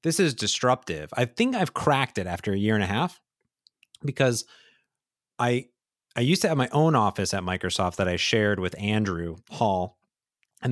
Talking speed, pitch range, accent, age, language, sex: 180 wpm, 105-135 Hz, American, 30-49, English, male